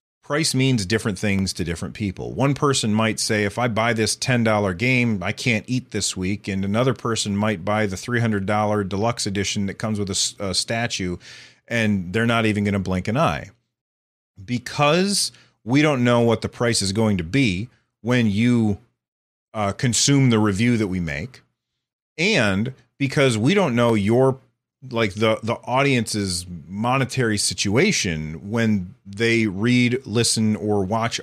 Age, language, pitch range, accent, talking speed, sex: 40-59, English, 105-125 Hz, American, 165 wpm, male